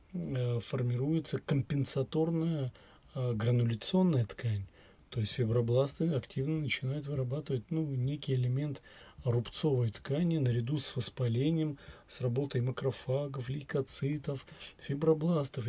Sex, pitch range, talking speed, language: male, 120-155 Hz, 90 wpm, Russian